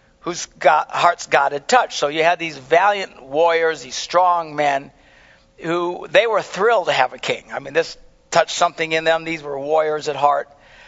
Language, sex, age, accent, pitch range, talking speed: English, male, 50-69, American, 140-200 Hz, 190 wpm